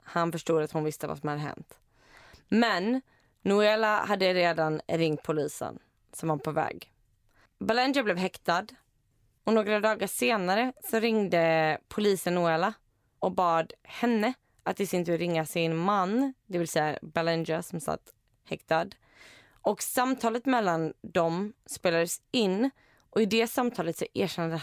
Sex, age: female, 20-39